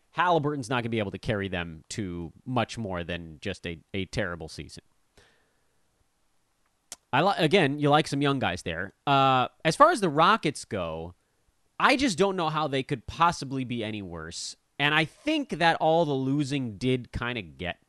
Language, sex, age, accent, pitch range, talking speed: English, male, 30-49, American, 100-160 Hz, 190 wpm